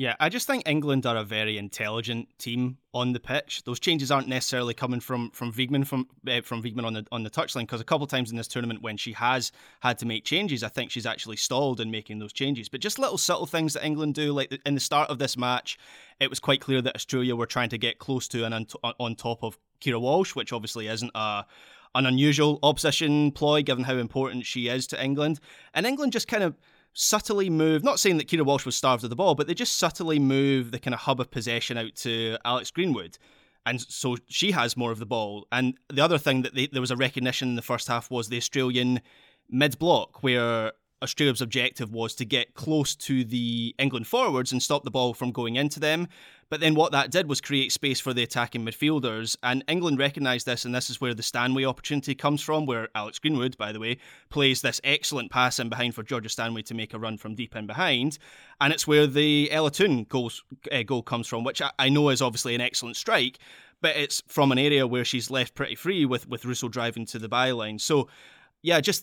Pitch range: 120-145 Hz